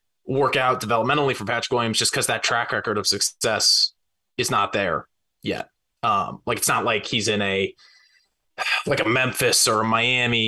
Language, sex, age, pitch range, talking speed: English, male, 20-39, 110-140 Hz, 180 wpm